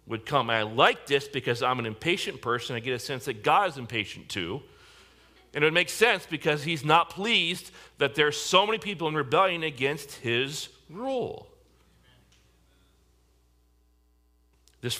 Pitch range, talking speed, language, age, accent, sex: 100-150 Hz, 155 wpm, English, 40-59, American, male